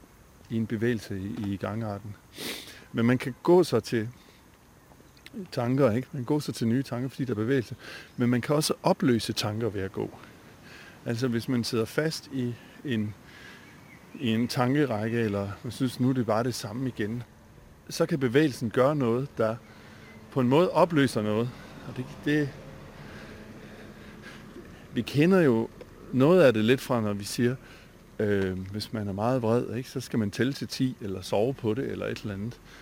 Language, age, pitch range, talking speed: Danish, 50-69, 110-135 Hz, 180 wpm